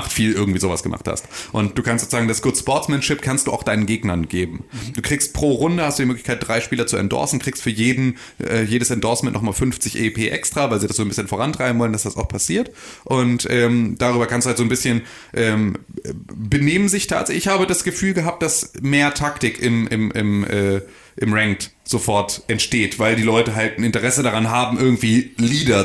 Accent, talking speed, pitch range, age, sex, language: German, 210 wpm, 110-130 Hz, 30-49, male, German